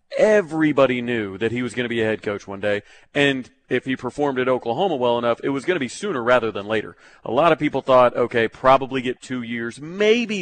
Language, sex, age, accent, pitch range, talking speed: English, male, 40-59, American, 120-145 Hz, 235 wpm